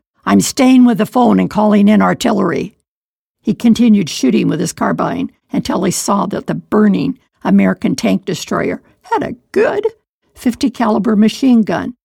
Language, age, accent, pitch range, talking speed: English, 60-79, American, 175-230 Hz, 155 wpm